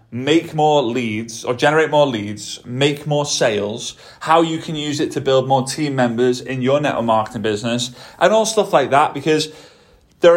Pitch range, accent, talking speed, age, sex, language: 125-160 Hz, British, 185 wpm, 30-49, male, English